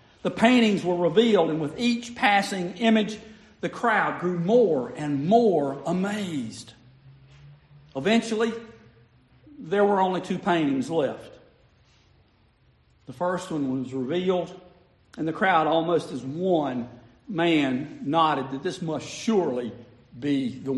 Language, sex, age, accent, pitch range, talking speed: English, male, 50-69, American, 125-180 Hz, 120 wpm